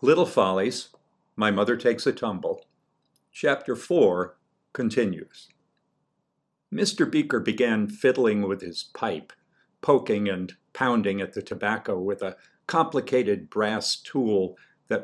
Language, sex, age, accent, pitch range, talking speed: English, male, 50-69, American, 100-120 Hz, 115 wpm